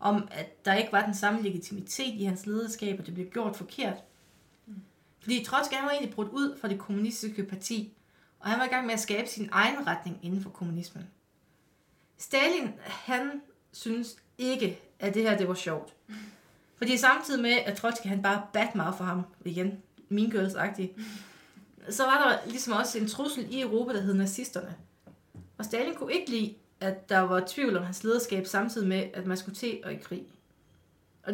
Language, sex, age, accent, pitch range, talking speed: Danish, female, 30-49, native, 190-230 Hz, 190 wpm